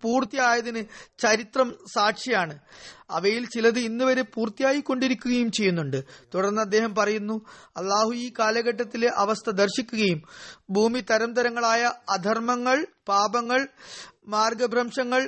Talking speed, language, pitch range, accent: 85 wpm, Malayalam, 205-245 Hz, native